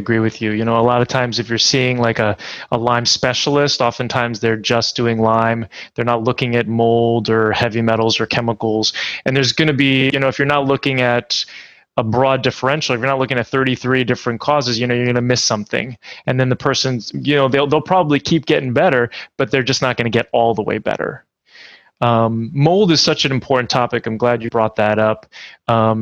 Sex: male